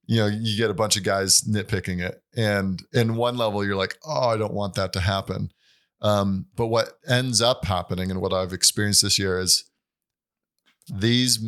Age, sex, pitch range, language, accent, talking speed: 30-49, male, 95-115 Hz, English, American, 195 wpm